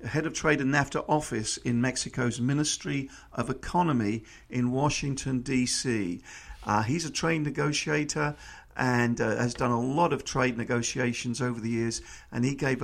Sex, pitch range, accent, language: male, 120-150 Hz, British, English